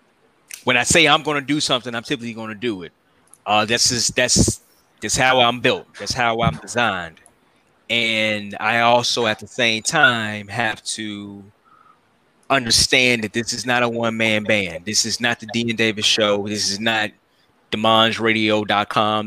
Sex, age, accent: male, 20-39, American